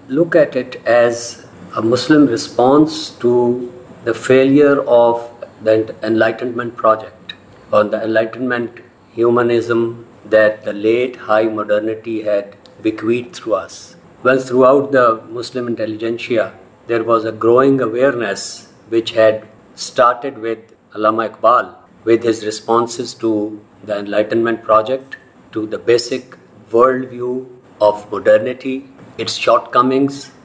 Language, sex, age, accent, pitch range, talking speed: English, male, 50-69, Indian, 110-130 Hz, 115 wpm